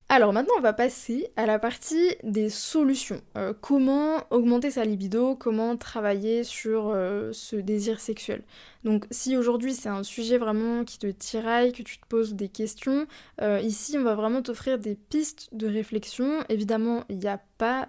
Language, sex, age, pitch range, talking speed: French, female, 20-39, 215-250 Hz, 180 wpm